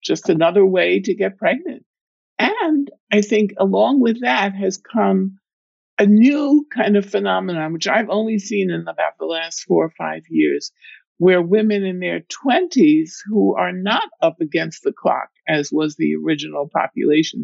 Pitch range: 160-230 Hz